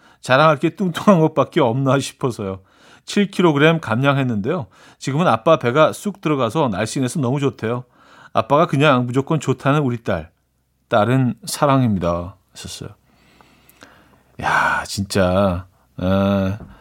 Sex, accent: male, native